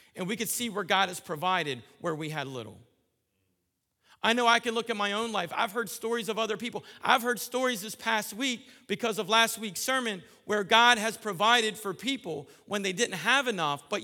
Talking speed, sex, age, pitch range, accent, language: 215 wpm, male, 50-69, 170-230 Hz, American, English